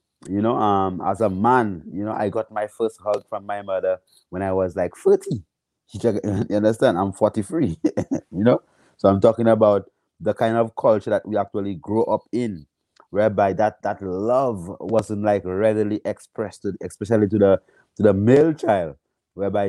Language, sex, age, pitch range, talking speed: English, male, 30-49, 100-115 Hz, 180 wpm